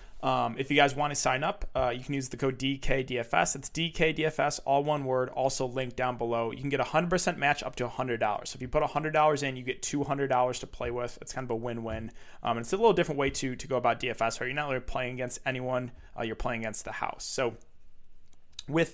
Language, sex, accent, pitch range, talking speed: English, male, American, 125-155 Hz, 240 wpm